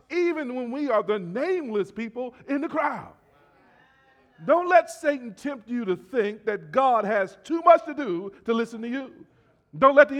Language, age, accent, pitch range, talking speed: English, 40-59, American, 160-260 Hz, 180 wpm